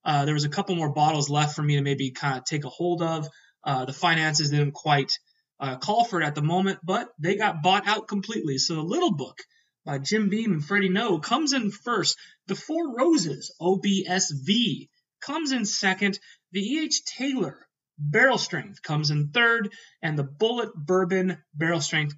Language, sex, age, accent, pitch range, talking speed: English, male, 30-49, American, 150-205 Hz, 190 wpm